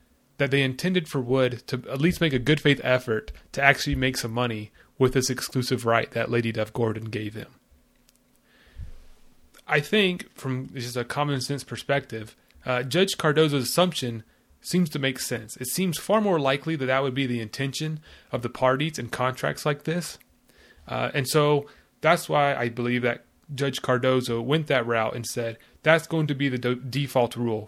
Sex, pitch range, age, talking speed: male, 120-150 Hz, 30-49, 180 wpm